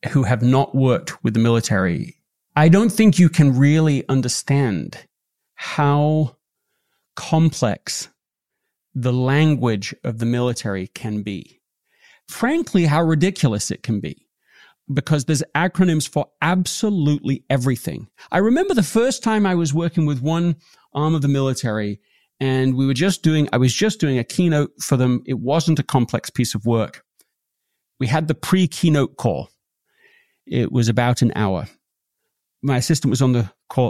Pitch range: 125-170 Hz